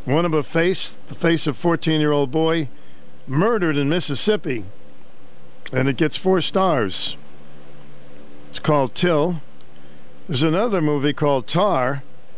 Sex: male